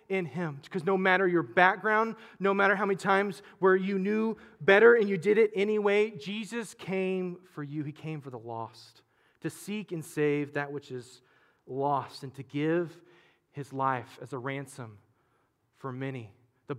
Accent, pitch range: American, 140-175 Hz